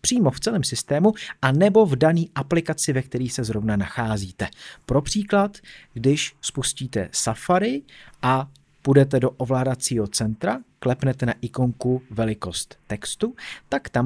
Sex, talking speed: male, 130 wpm